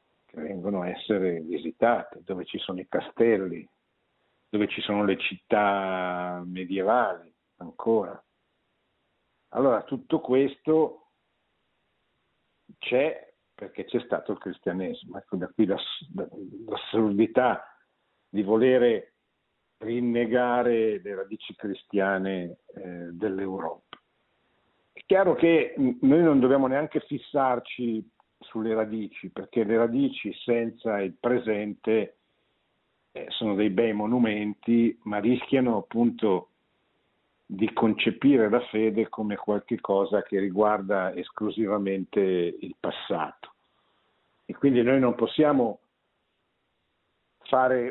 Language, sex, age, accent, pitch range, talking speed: Italian, male, 50-69, native, 100-125 Hz, 95 wpm